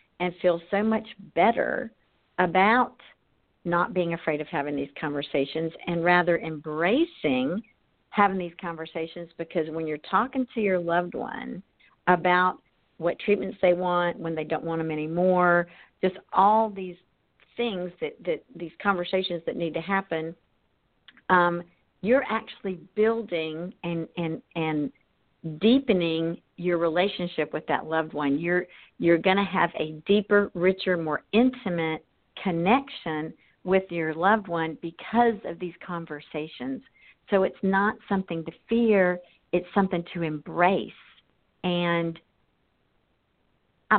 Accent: American